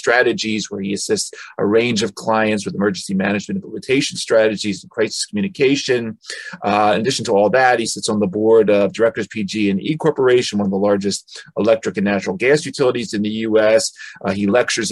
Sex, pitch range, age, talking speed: male, 100-110 Hz, 40-59, 195 wpm